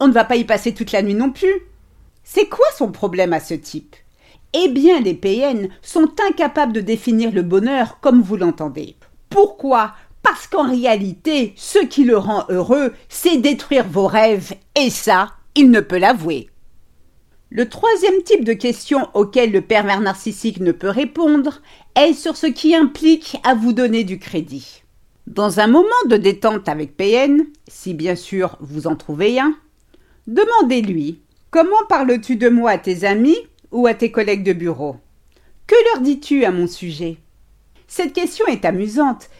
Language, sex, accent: French, female, French